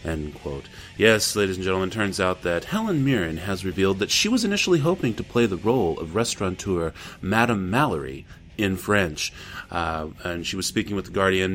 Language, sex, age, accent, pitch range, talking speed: English, male, 30-49, American, 95-135 Hz, 185 wpm